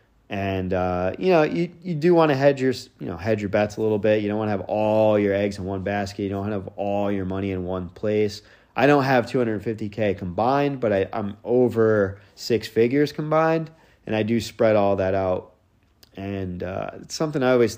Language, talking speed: English, 220 wpm